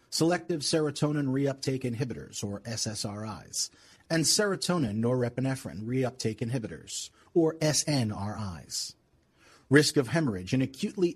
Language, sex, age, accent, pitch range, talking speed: English, male, 40-59, American, 115-150 Hz, 95 wpm